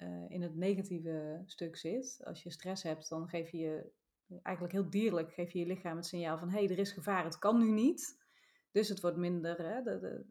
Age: 30-49